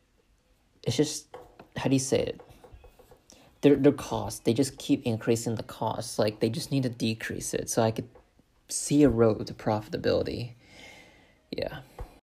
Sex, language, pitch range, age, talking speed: male, English, 115-150 Hz, 30-49, 155 wpm